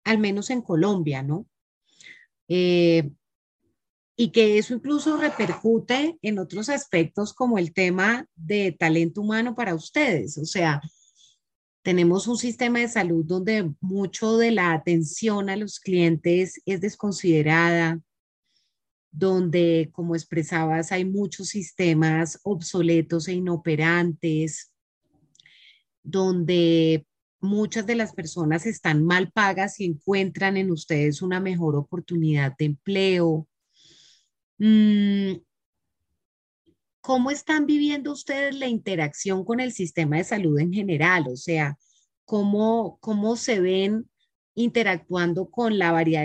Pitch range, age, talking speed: 165-210 Hz, 30-49, 115 wpm